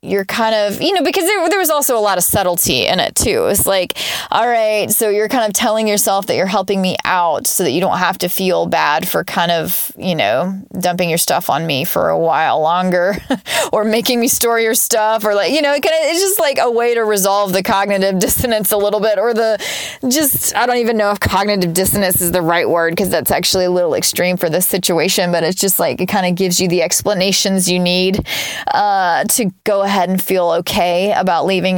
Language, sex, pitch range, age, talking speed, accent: English, female, 180-235 Hz, 20-39, 235 wpm, American